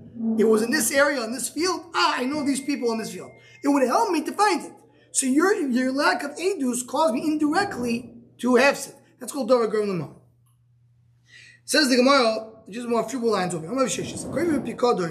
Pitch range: 195-265 Hz